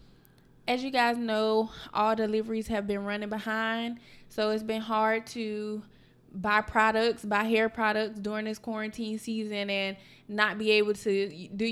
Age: 20-39